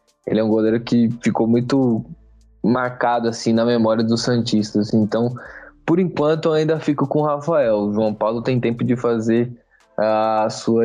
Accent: Brazilian